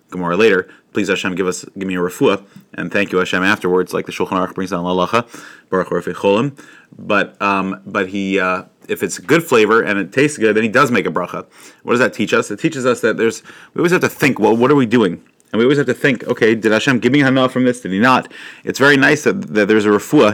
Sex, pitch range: male, 95-115 Hz